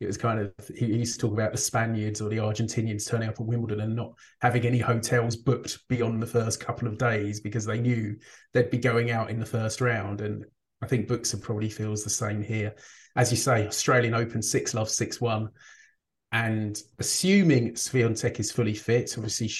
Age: 30-49